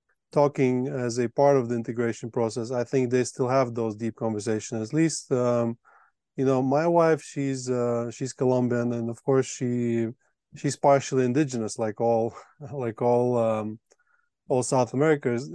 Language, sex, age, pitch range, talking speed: English, male, 20-39, 115-140 Hz, 160 wpm